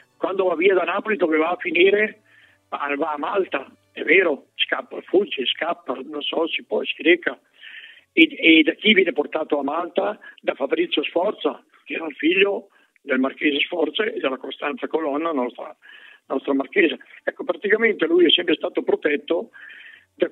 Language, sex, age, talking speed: Italian, male, 60-79, 165 wpm